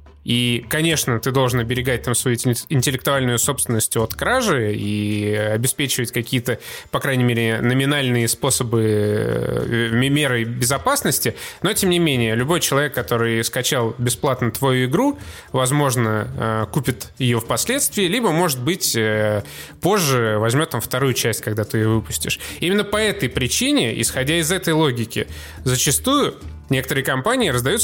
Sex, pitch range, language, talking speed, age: male, 115-145 Hz, Russian, 130 wpm, 20-39